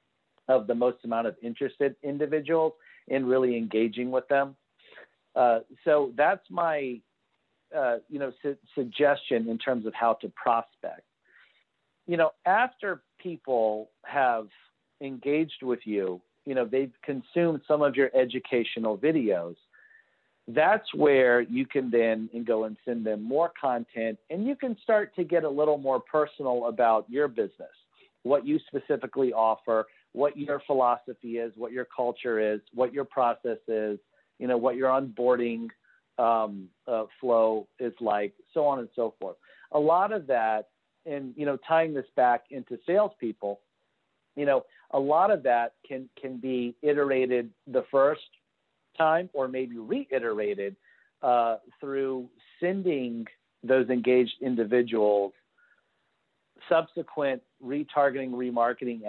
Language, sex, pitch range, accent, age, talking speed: English, male, 115-145 Hz, American, 50-69, 135 wpm